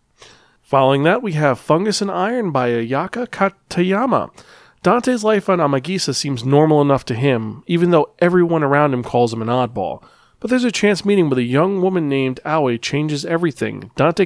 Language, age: English, 40-59